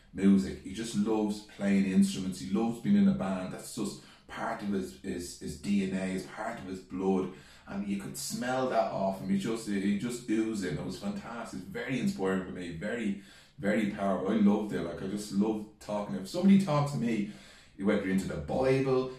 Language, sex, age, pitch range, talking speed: English, male, 30-49, 95-130 Hz, 205 wpm